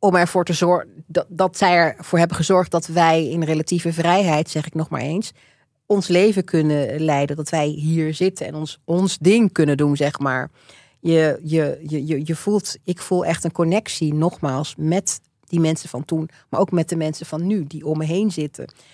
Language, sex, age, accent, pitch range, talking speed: Dutch, female, 40-59, Dutch, 150-175 Hz, 200 wpm